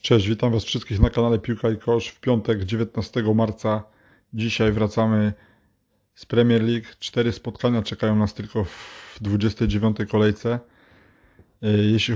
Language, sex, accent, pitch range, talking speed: Polish, male, native, 100-110 Hz, 135 wpm